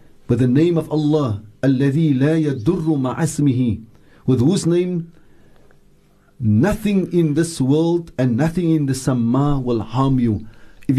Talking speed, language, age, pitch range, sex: 125 wpm, English, 50-69, 120-160 Hz, male